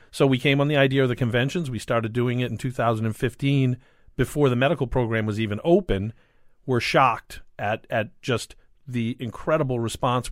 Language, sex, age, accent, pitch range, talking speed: English, male, 50-69, American, 110-130 Hz, 175 wpm